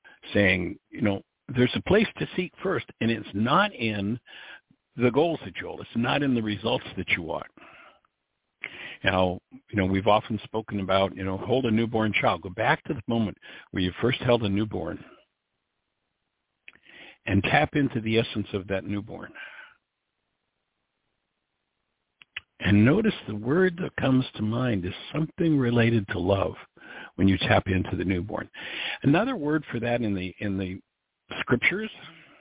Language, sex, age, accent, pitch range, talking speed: English, male, 60-79, American, 105-145 Hz, 160 wpm